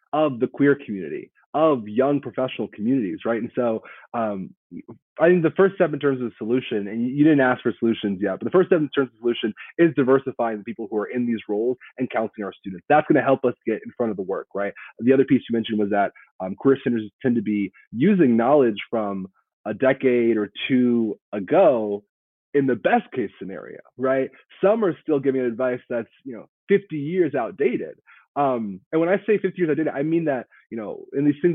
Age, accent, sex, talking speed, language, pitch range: 30-49, American, male, 225 wpm, English, 110-140 Hz